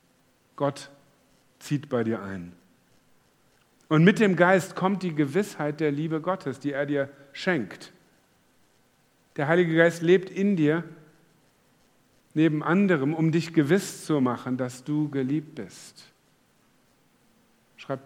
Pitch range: 140-165 Hz